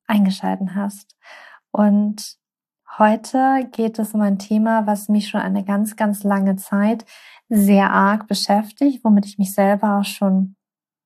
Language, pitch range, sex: German, 200-225 Hz, female